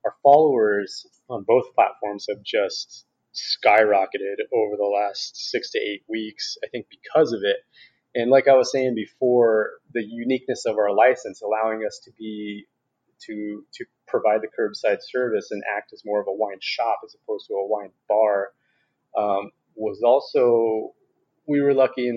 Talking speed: 170 wpm